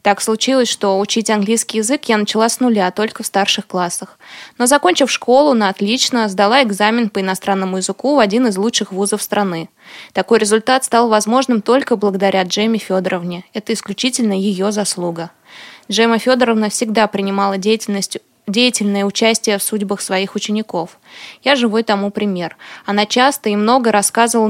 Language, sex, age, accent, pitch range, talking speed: Russian, female, 20-39, native, 200-235 Hz, 150 wpm